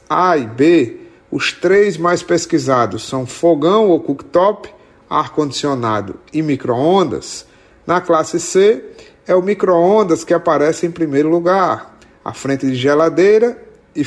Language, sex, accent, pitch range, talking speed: Portuguese, male, Brazilian, 135-175 Hz, 130 wpm